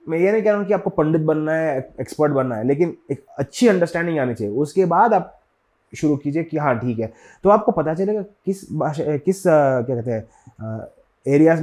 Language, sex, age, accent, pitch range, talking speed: Hindi, male, 30-49, native, 115-170 Hz, 220 wpm